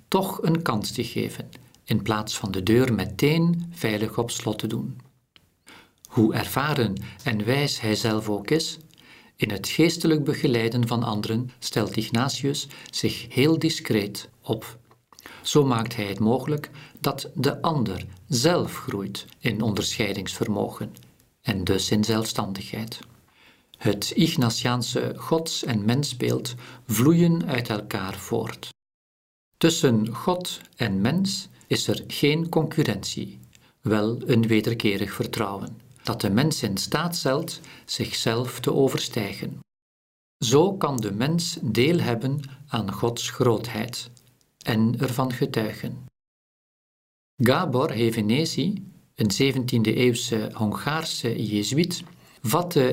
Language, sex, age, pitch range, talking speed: Dutch, male, 50-69, 110-145 Hz, 115 wpm